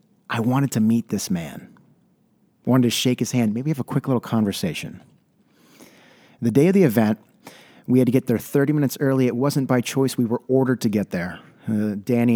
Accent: American